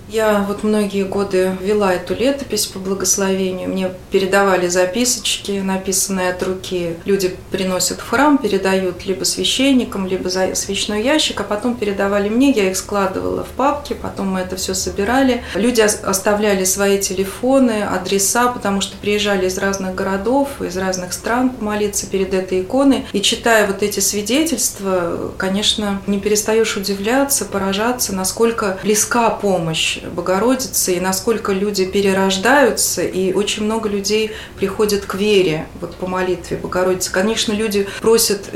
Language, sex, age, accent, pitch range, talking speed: Russian, female, 30-49, native, 185-220 Hz, 140 wpm